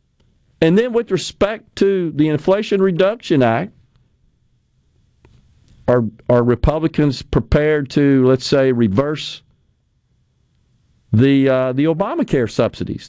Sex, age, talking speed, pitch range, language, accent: male, 50-69, 100 wpm, 125-180 Hz, English, American